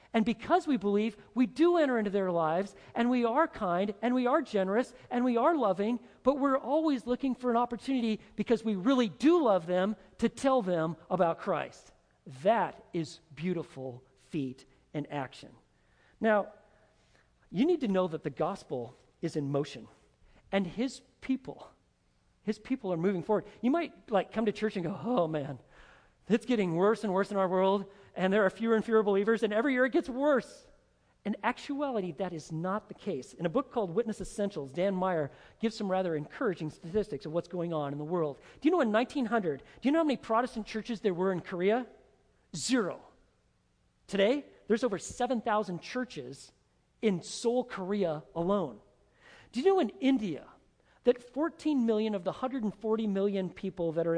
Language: English